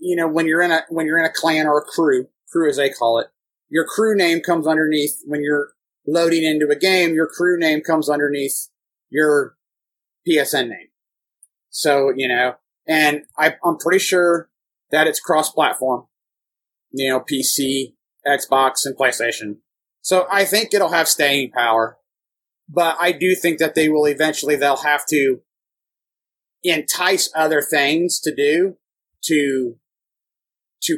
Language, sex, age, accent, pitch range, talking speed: English, male, 30-49, American, 140-170 Hz, 155 wpm